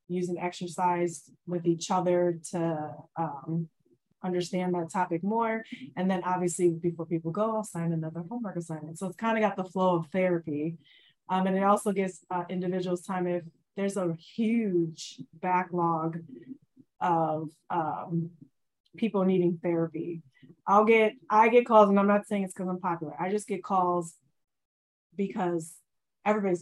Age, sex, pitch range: 20-39, female, 170-190 Hz